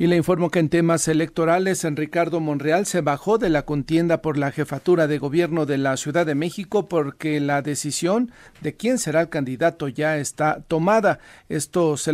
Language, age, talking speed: Spanish, 40-59, 190 wpm